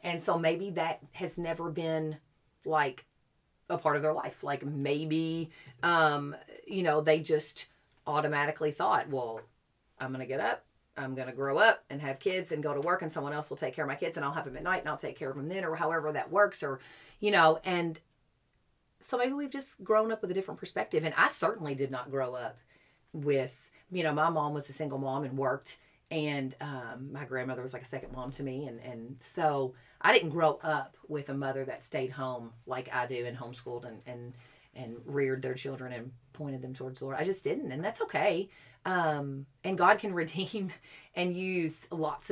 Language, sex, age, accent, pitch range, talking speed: English, female, 40-59, American, 130-165 Hz, 215 wpm